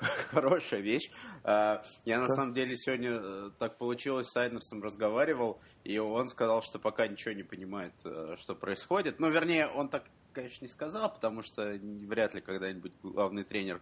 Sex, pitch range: male, 100-120 Hz